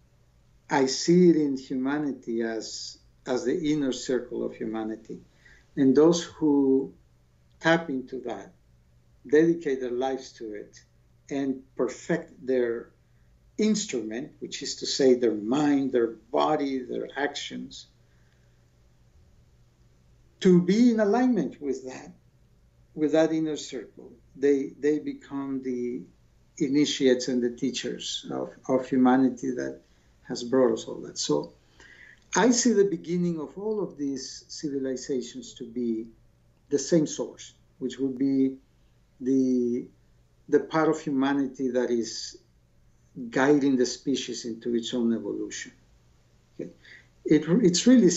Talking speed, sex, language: 120 wpm, male, English